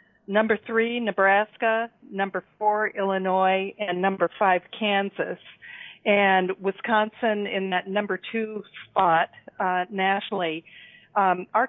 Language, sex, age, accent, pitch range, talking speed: English, female, 50-69, American, 180-215 Hz, 110 wpm